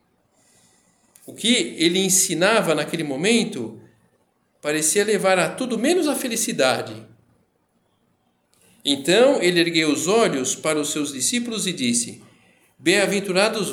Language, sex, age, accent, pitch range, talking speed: Portuguese, male, 50-69, Brazilian, 175-215 Hz, 110 wpm